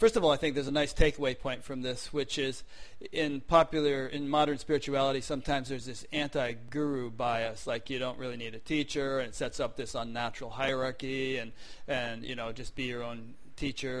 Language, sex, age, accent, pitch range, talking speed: English, male, 30-49, American, 125-145 Hz, 200 wpm